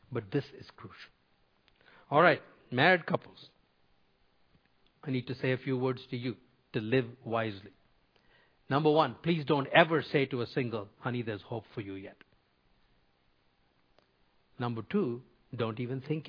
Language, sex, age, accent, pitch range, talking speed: English, male, 50-69, Indian, 120-160 Hz, 145 wpm